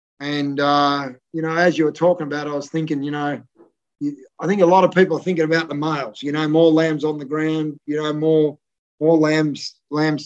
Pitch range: 145-165 Hz